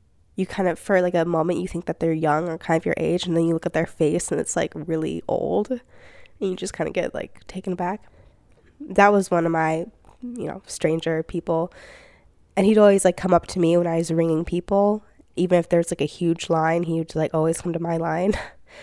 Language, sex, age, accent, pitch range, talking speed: English, female, 10-29, American, 170-195 Hz, 240 wpm